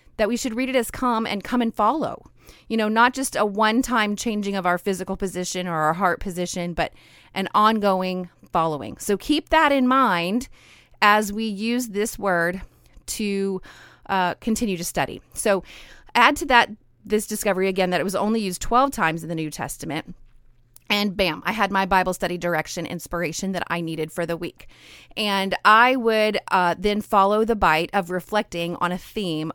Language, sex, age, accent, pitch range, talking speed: English, female, 30-49, American, 170-220 Hz, 185 wpm